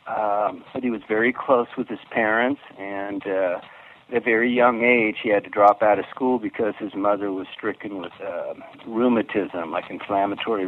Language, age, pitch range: English, 50-69, 100-120 Hz